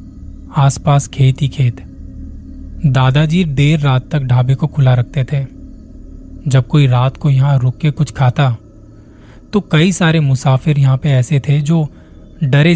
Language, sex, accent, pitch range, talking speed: Hindi, male, native, 115-150 Hz, 145 wpm